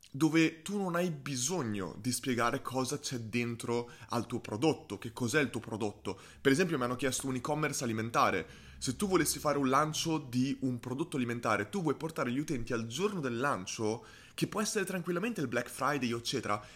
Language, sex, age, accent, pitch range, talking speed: Italian, male, 20-39, native, 125-175 Hz, 190 wpm